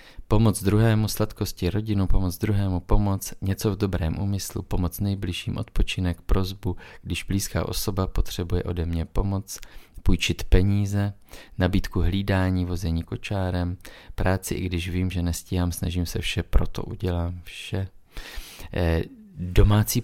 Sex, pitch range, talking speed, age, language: male, 85-100 Hz, 125 wpm, 30-49, Czech